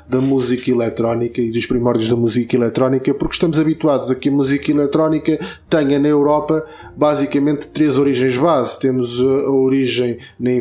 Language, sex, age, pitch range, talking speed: Portuguese, male, 20-39, 135-175 Hz, 160 wpm